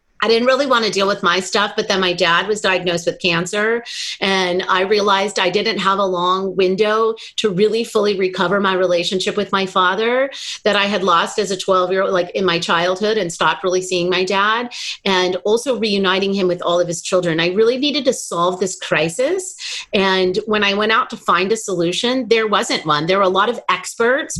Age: 30-49